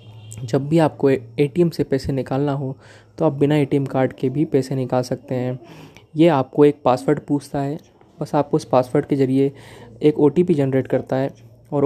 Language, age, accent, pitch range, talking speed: Hindi, 20-39, native, 130-150 Hz, 185 wpm